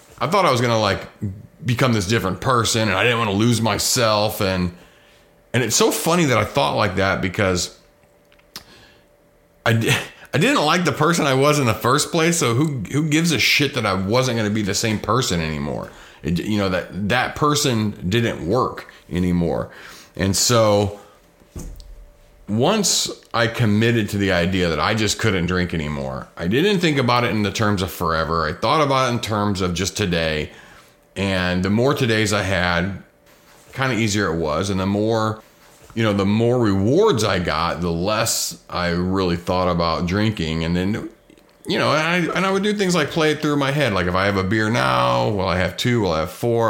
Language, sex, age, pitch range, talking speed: English, male, 30-49, 95-115 Hz, 200 wpm